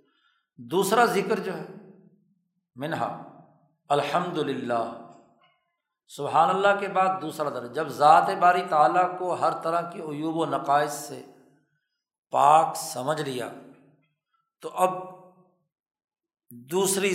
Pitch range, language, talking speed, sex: 145-195 Hz, Urdu, 105 wpm, male